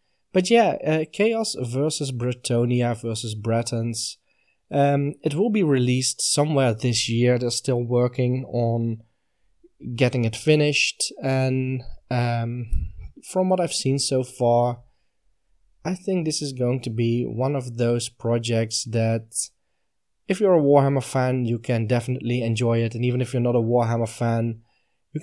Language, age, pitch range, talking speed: English, 20-39, 115-140 Hz, 145 wpm